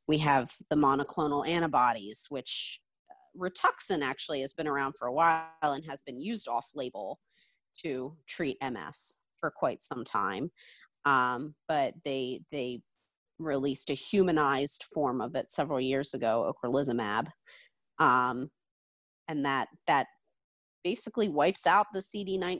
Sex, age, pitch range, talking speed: female, 30-49, 135-165 Hz, 130 wpm